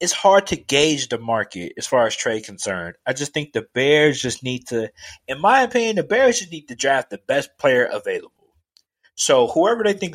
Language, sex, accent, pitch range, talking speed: English, male, American, 110-180 Hz, 215 wpm